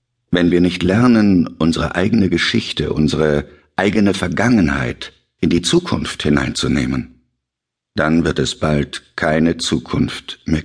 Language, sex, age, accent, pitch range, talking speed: German, male, 60-79, German, 80-105 Hz, 120 wpm